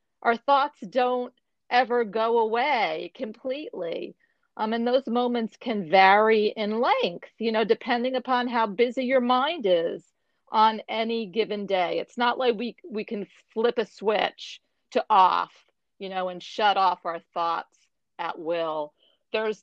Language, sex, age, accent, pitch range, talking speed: English, female, 40-59, American, 190-240 Hz, 150 wpm